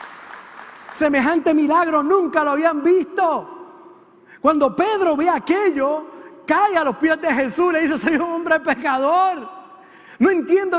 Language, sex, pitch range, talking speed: Spanish, male, 235-315 Hz, 135 wpm